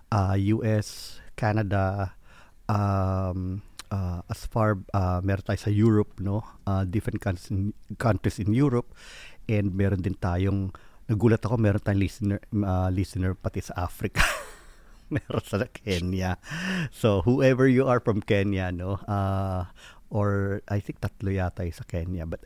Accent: native